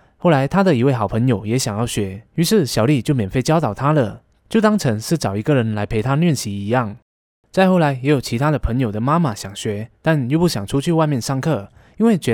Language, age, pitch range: Chinese, 20-39, 110-160 Hz